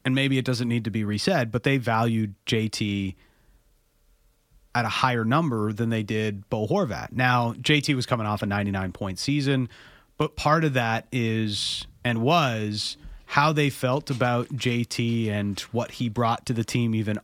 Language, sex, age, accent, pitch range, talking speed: English, male, 30-49, American, 115-140 Hz, 170 wpm